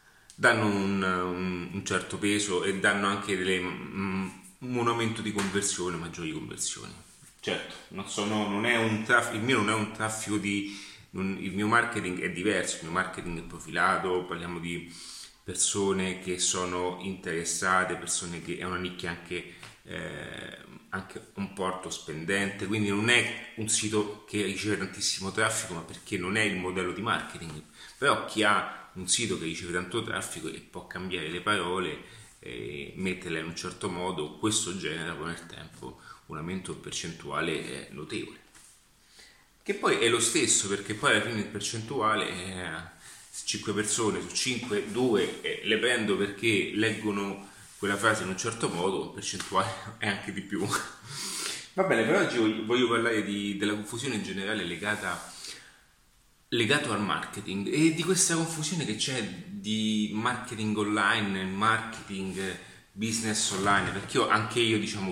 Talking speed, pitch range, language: 155 wpm, 90-110 Hz, Italian